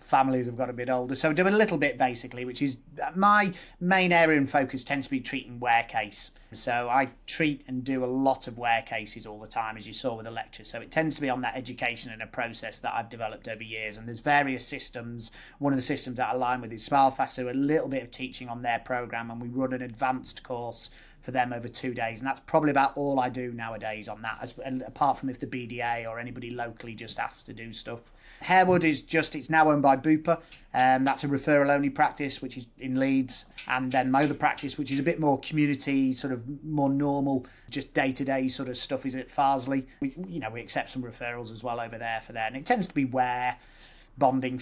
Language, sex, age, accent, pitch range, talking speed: English, male, 30-49, British, 120-145 Hz, 240 wpm